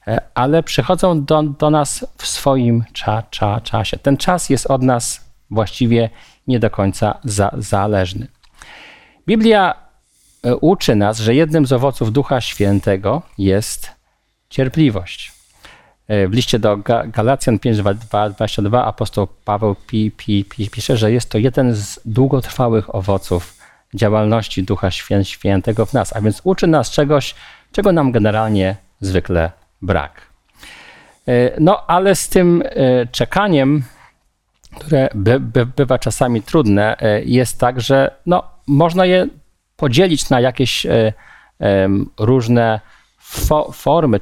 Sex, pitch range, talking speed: male, 105-140 Hz, 115 wpm